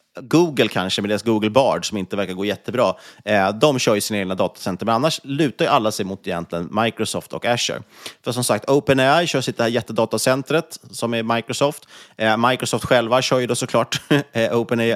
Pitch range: 105-135 Hz